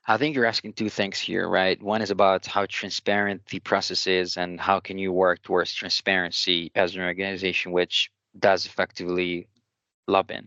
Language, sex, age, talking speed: English, male, 20-39, 170 wpm